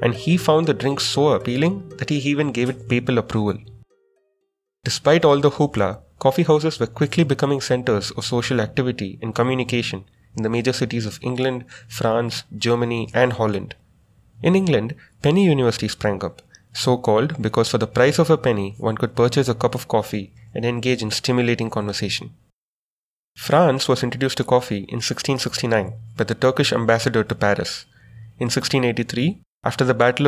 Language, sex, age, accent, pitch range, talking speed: English, male, 30-49, Indian, 110-135 Hz, 165 wpm